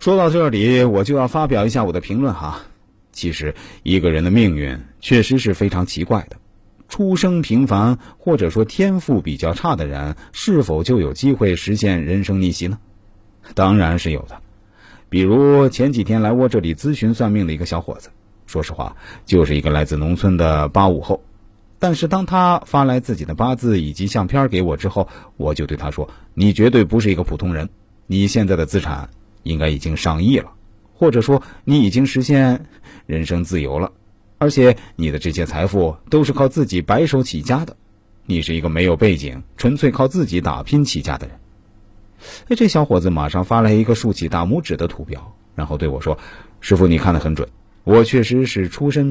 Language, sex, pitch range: Chinese, male, 85-125 Hz